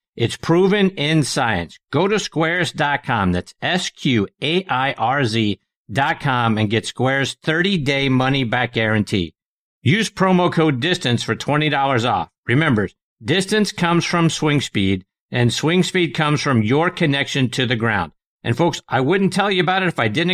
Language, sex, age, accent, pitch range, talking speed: English, male, 50-69, American, 120-170 Hz, 150 wpm